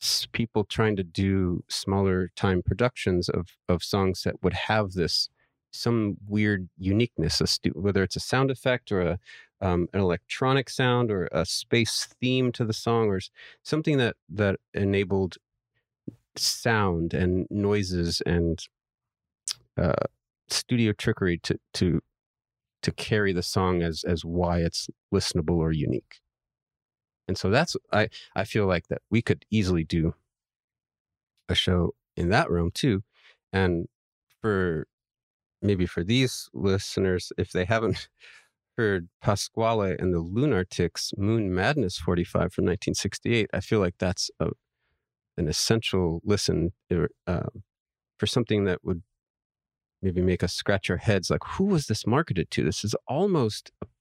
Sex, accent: male, American